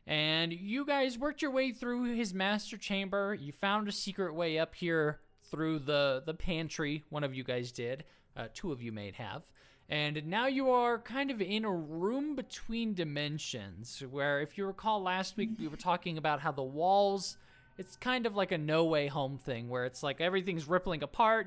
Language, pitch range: English, 135-195 Hz